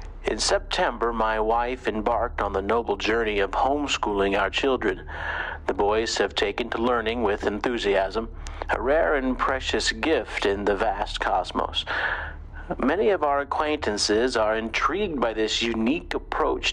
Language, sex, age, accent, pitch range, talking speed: English, male, 50-69, American, 95-125 Hz, 145 wpm